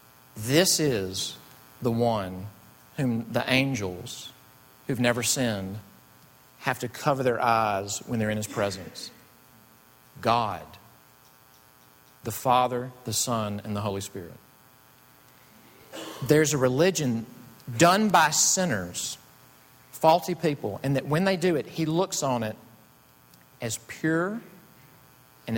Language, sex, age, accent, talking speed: English, male, 50-69, American, 115 wpm